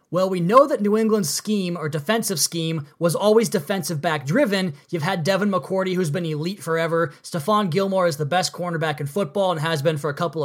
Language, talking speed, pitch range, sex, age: English, 215 wpm, 160-200 Hz, male, 20-39